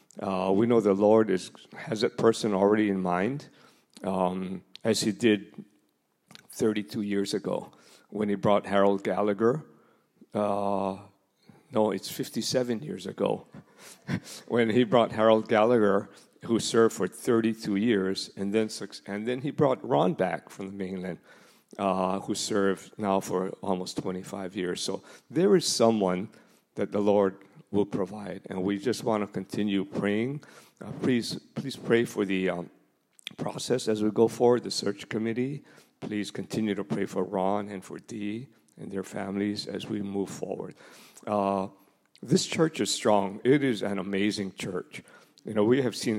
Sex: male